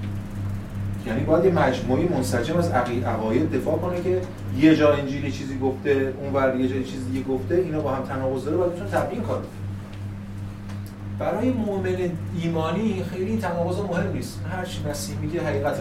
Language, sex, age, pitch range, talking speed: Persian, male, 30-49, 100-160 Hz, 160 wpm